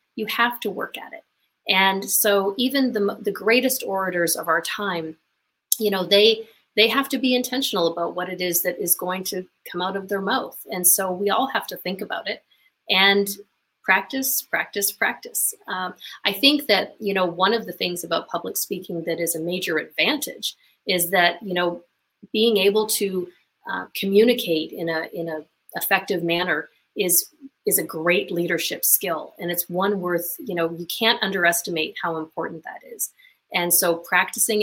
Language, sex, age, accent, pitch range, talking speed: English, female, 30-49, American, 175-215 Hz, 180 wpm